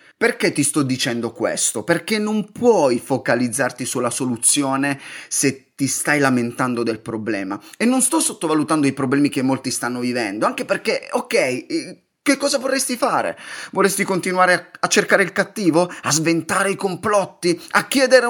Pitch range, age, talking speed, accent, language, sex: 140-230 Hz, 30-49, 155 wpm, native, Italian, male